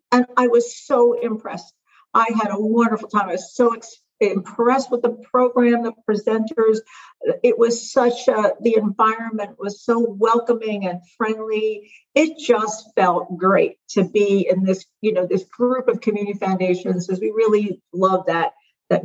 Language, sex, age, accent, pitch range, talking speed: English, female, 50-69, American, 185-230 Hz, 165 wpm